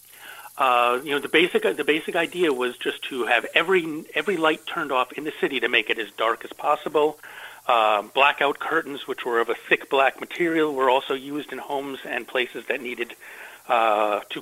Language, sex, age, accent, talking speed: English, male, 40-59, American, 200 wpm